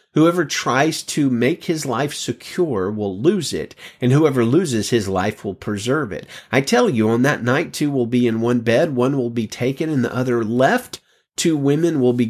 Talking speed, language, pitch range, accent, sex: 205 wpm, English, 115-170 Hz, American, male